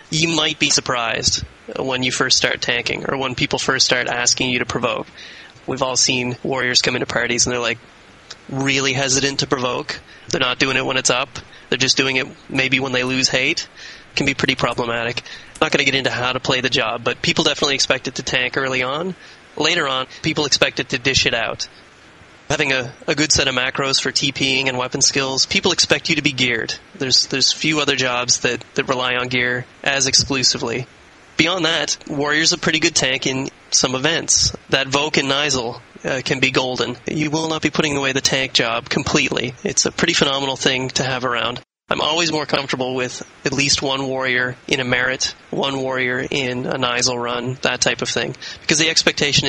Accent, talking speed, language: American, 205 wpm, English